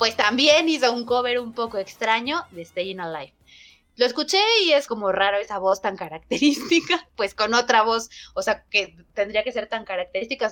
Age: 20-39